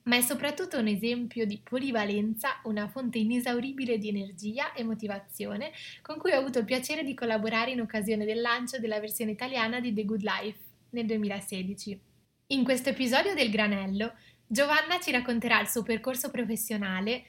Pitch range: 215-255 Hz